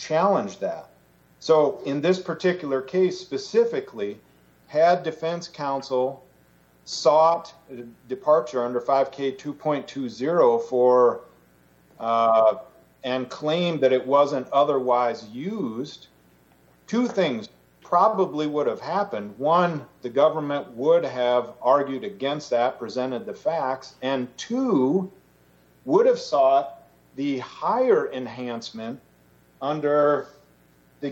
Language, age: English, 40-59